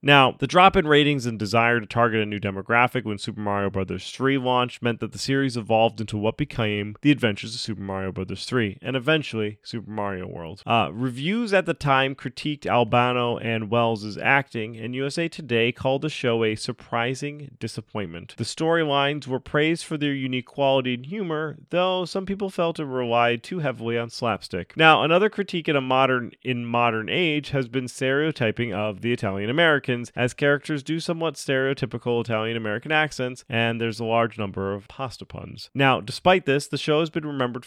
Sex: male